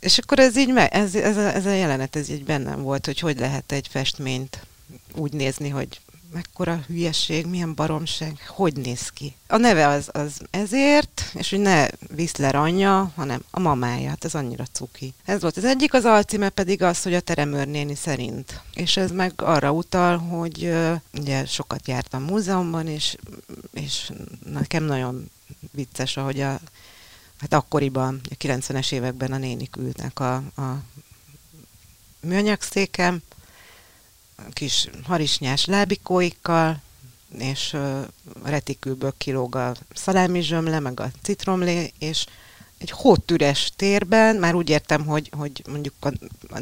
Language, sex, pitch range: Hungarian, female, 130-175 Hz